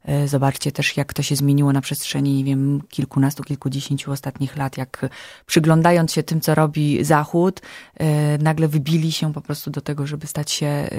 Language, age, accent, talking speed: Polish, 20-39, native, 170 wpm